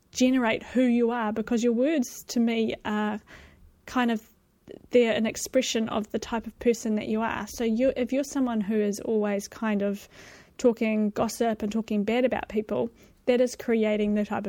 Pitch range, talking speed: 210-235 Hz, 185 wpm